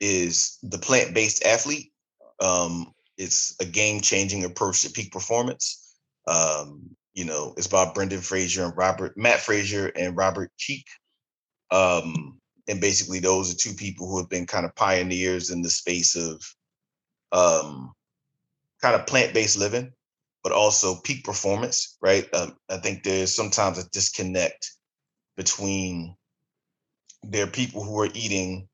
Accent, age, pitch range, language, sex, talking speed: American, 30-49, 90-110 Hz, English, male, 140 wpm